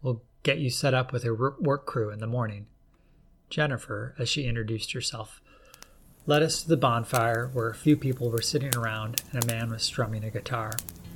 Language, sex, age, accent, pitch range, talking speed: English, male, 30-49, American, 115-140 Hz, 190 wpm